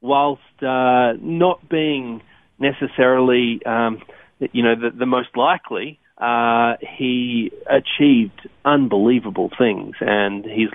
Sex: male